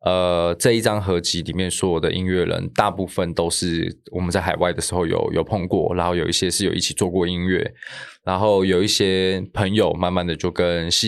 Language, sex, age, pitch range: Chinese, male, 20-39, 90-110 Hz